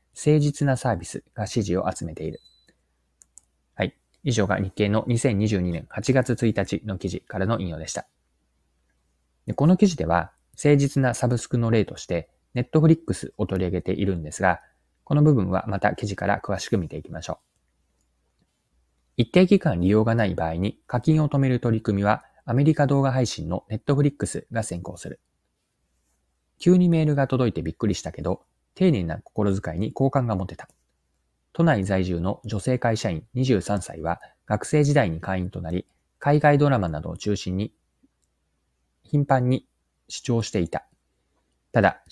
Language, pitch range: Japanese, 85-125 Hz